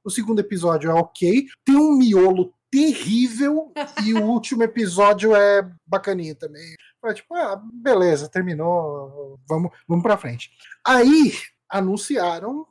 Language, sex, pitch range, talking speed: Portuguese, male, 150-225 Hz, 125 wpm